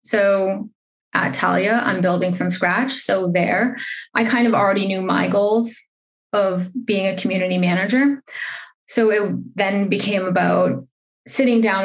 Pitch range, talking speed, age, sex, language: 195-240 Hz, 140 wpm, 20-39, female, English